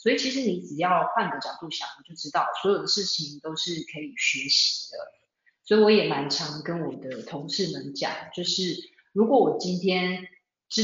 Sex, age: female, 30-49